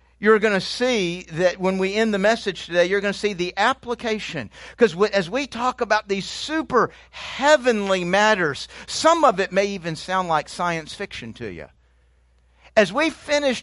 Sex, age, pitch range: male, 50-69, 155-210 Hz